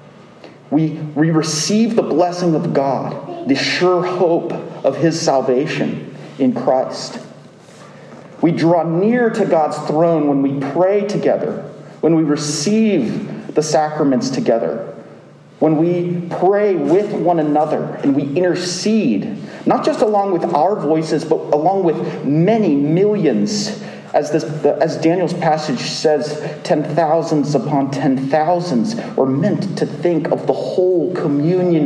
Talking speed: 130 wpm